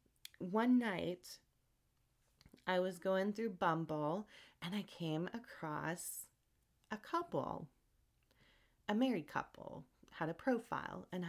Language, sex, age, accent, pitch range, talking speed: English, female, 30-49, American, 155-205 Hz, 105 wpm